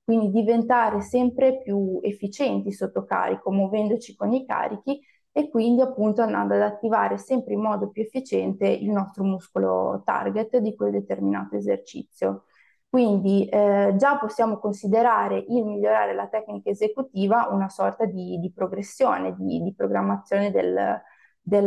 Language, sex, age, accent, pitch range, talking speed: Italian, female, 20-39, native, 190-225 Hz, 140 wpm